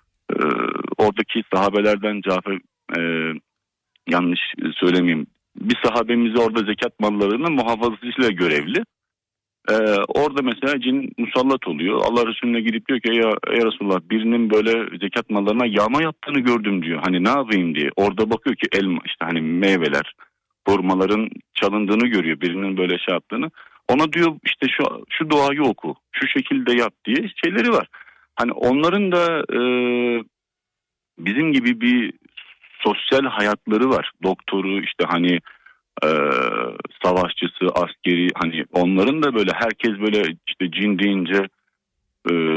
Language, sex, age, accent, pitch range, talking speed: Turkish, male, 40-59, native, 95-150 Hz, 135 wpm